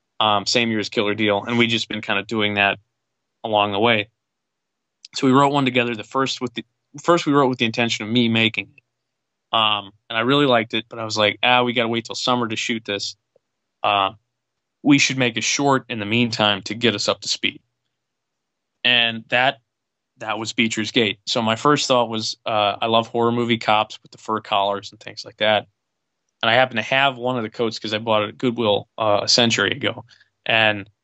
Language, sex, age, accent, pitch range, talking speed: English, male, 20-39, American, 105-125 Hz, 220 wpm